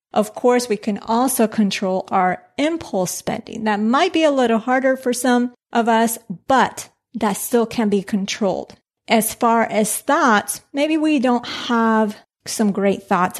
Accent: American